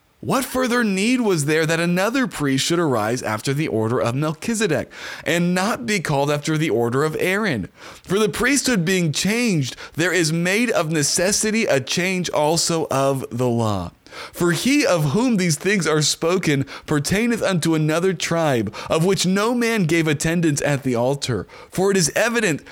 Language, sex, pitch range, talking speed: English, male, 145-205 Hz, 170 wpm